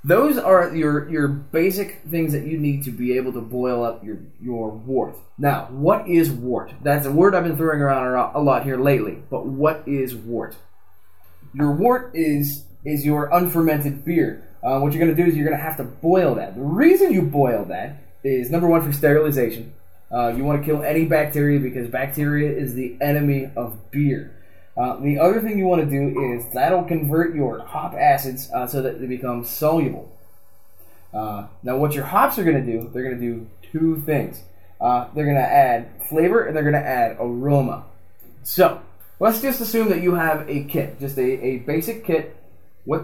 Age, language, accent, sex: 20-39, English, American, male